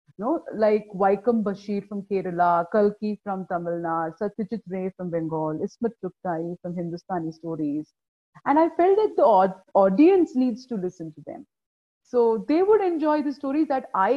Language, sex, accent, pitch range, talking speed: Hindi, female, native, 185-255 Hz, 165 wpm